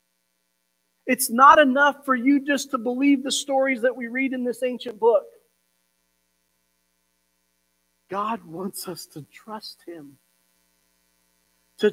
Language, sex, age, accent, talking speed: English, male, 40-59, American, 120 wpm